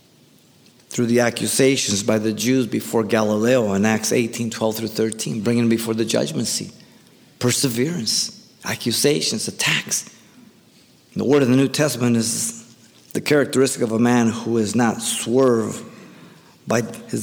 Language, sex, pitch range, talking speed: English, male, 115-165 Hz, 140 wpm